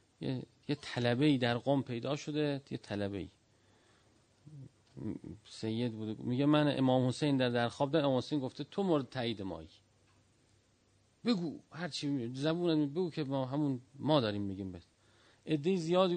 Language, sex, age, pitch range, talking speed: Persian, male, 40-59, 110-150 Hz, 155 wpm